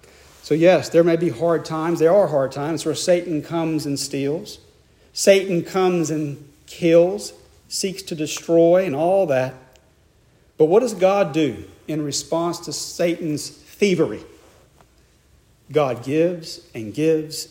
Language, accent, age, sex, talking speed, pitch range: English, American, 40-59, male, 135 wpm, 150-185 Hz